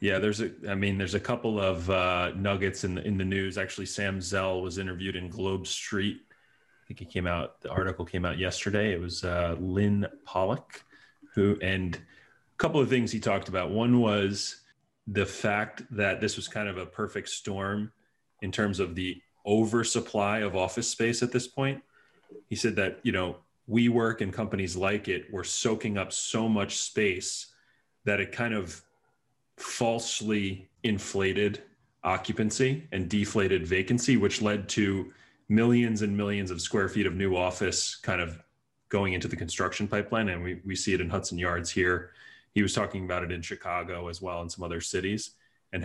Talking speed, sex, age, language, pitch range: 180 wpm, male, 30-49, English, 90-105 Hz